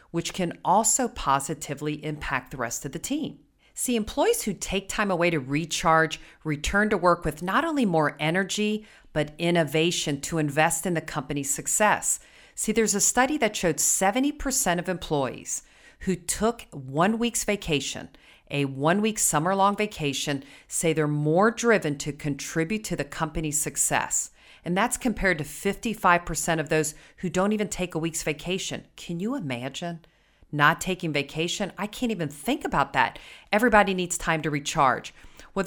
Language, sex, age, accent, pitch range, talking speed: English, female, 40-59, American, 150-205 Hz, 160 wpm